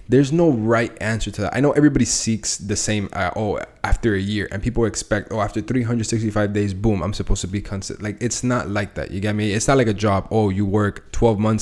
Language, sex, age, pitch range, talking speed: English, male, 20-39, 95-115 Hz, 250 wpm